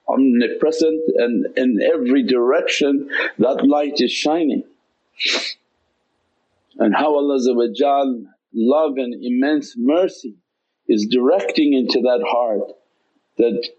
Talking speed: 95 wpm